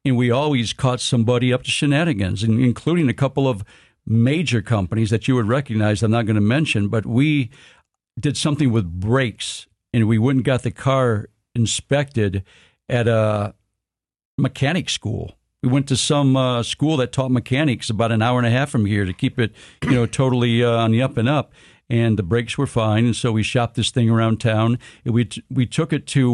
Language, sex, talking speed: English, male, 205 wpm